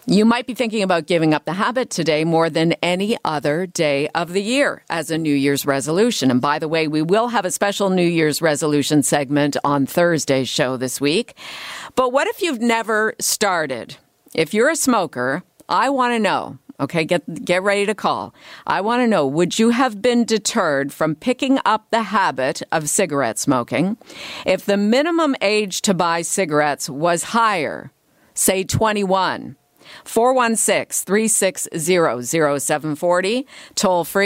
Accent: American